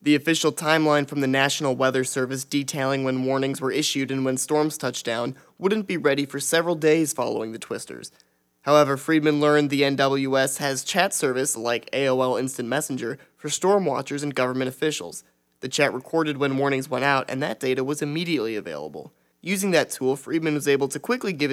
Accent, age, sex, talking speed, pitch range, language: American, 20-39, male, 185 wpm, 130-155 Hz, English